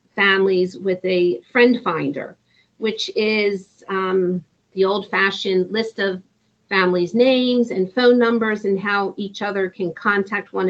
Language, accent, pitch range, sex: English, American, 185-220 Hz, female